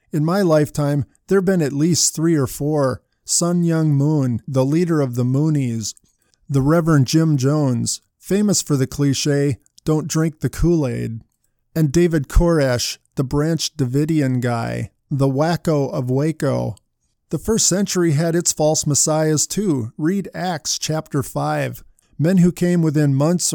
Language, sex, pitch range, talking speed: English, male, 135-165 Hz, 150 wpm